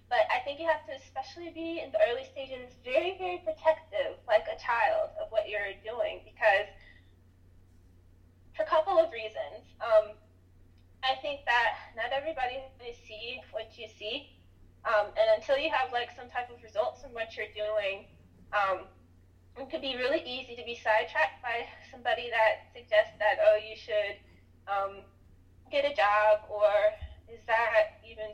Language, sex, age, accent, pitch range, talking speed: English, female, 20-39, American, 200-280 Hz, 170 wpm